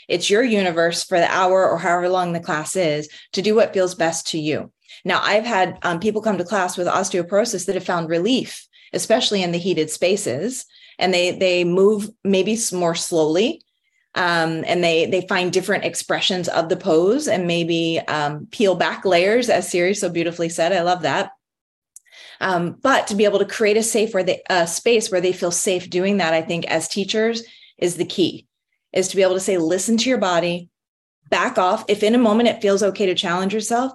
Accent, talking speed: American, 205 wpm